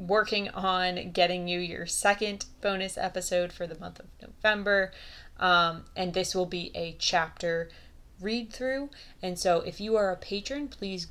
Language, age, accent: English, 20-39, American